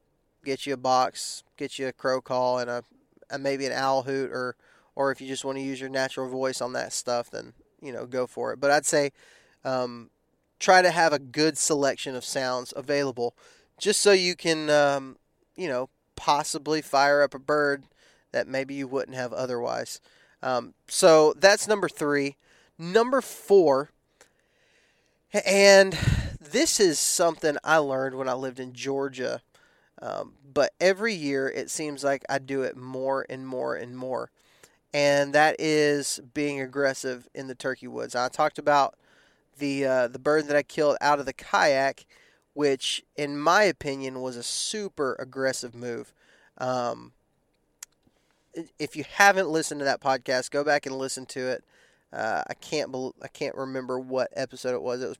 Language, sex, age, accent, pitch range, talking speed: English, male, 20-39, American, 130-150 Hz, 170 wpm